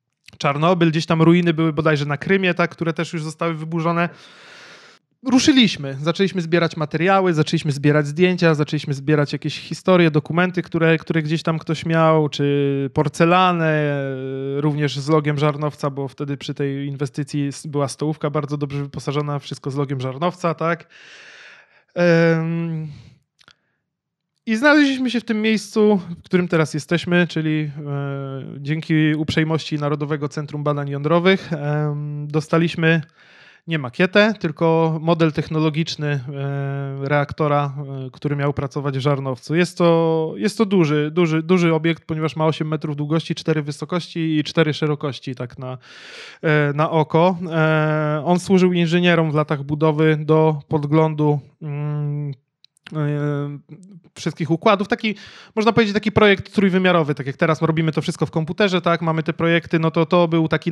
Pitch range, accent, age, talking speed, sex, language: 145-170 Hz, native, 20-39, 145 wpm, male, Polish